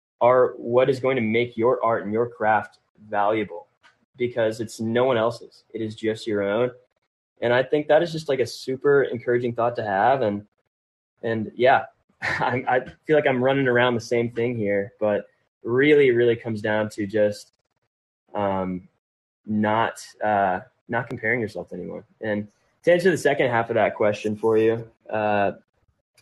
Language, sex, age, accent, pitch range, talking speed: English, male, 20-39, American, 105-125 Hz, 170 wpm